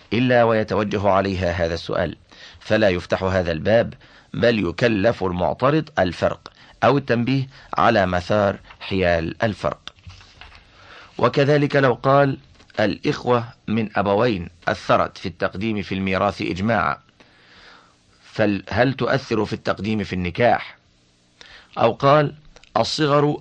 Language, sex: Arabic, male